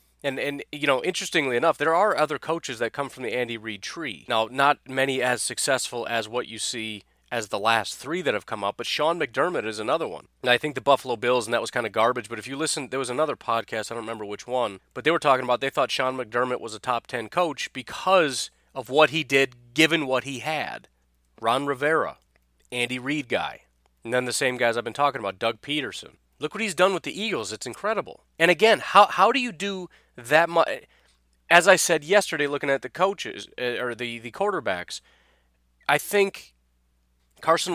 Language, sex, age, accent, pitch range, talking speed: English, male, 30-49, American, 115-155 Hz, 215 wpm